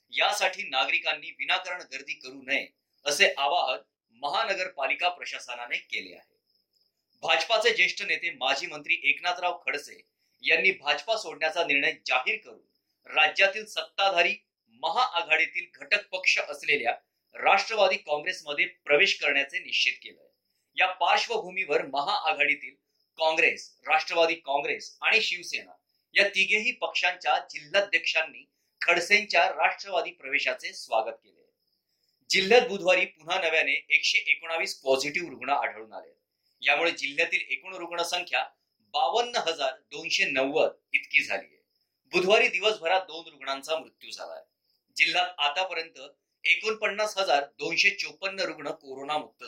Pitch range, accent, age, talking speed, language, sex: 160-200 Hz, native, 30-49, 100 wpm, Marathi, male